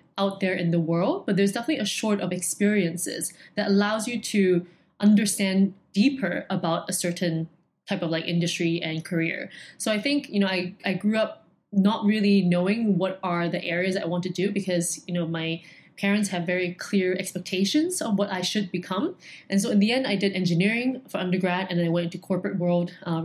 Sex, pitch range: female, 175-210 Hz